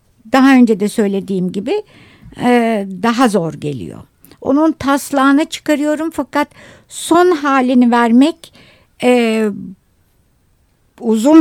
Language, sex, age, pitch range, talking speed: Turkish, female, 60-79, 210-280 Hz, 95 wpm